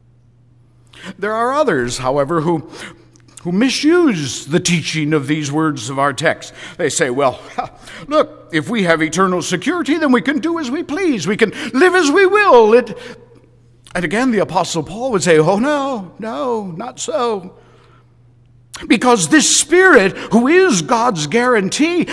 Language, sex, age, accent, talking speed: English, male, 60-79, American, 150 wpm